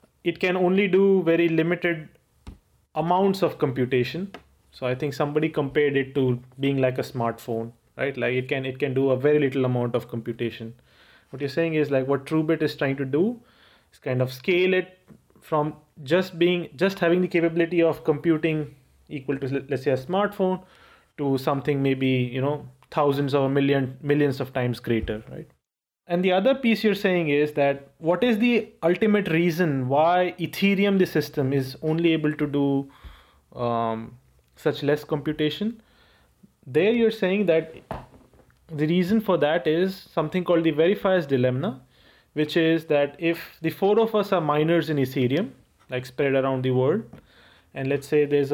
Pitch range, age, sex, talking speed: 135-175 Hz, 30-49, male, 170 wpm